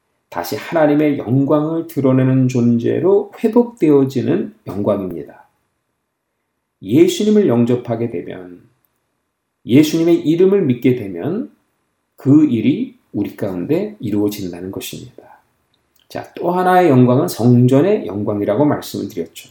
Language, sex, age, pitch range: Korean, male, 40-59, 110-160 Hz